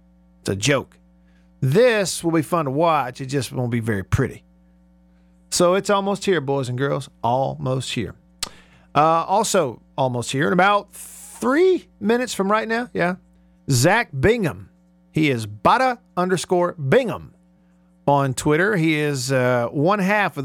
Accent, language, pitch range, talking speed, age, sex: American, English, 120-175 Hz, 150 wpm, 50-69, male